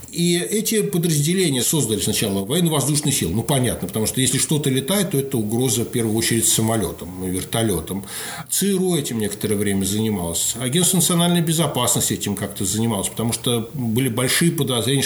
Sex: male